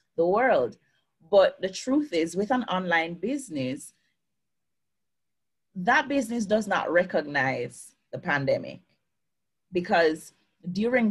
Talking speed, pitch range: 105 wpm, 155-200 Hz